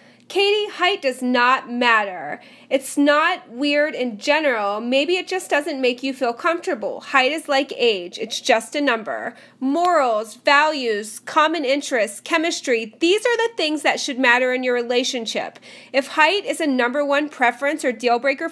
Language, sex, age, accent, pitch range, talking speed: English, female, 30-49, American, 245-310 Hz, 165 wpm